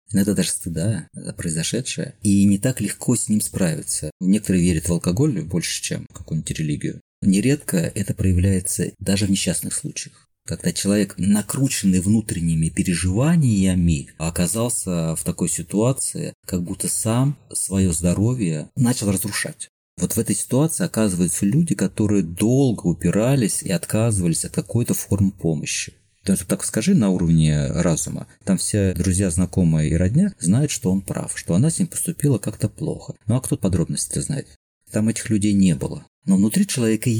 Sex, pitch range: male, 95-140 Hz